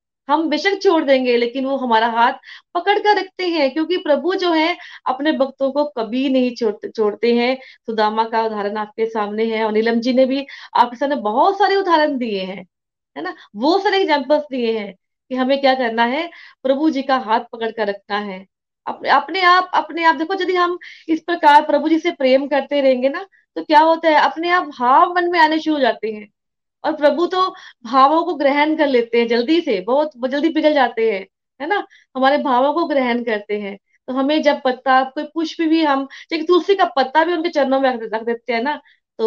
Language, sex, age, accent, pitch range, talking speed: Hindi, female, 20-39, native, 235-325 Hz, 210 wpm